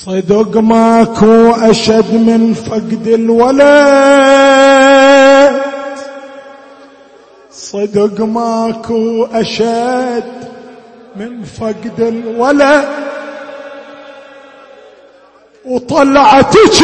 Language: Arabic